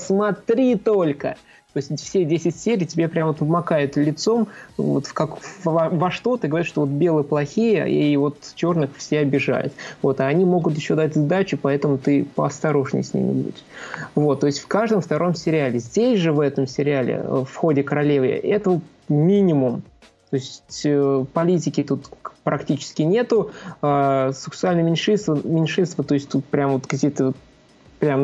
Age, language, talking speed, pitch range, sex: 20-39, Russian, 160 wpm, 140-175 Hz, male